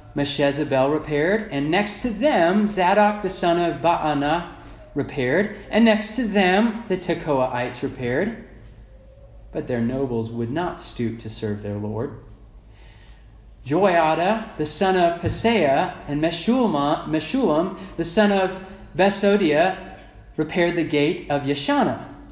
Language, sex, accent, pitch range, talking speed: English, male, American, 120-195 Hz, 125 wpm